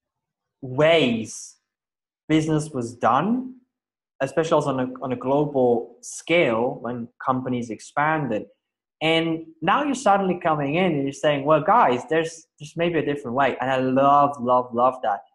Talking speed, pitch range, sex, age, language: 145 wpm, 135-175 Hz, male, 20-39, English